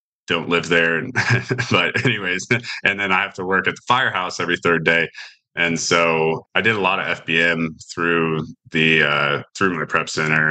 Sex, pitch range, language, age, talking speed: male, 80-100 Hz, English, 30-49, 185 wpm